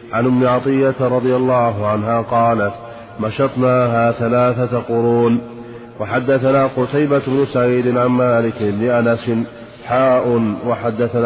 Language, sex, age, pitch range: Arabic, male, 30-49, 115-125 Hz